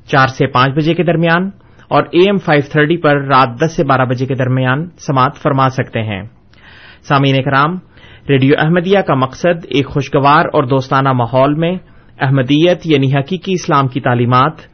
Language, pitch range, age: Urdu, 135-170 Hz, 30-49